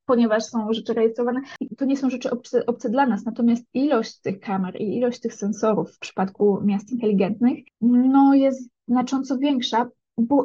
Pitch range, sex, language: 205-255 Hz, female, Polish